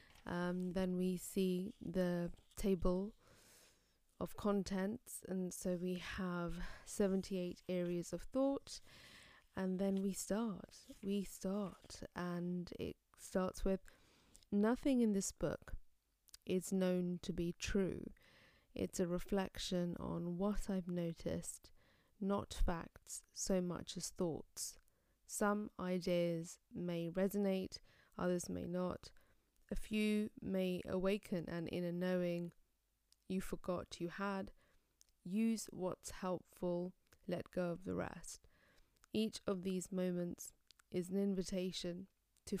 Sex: female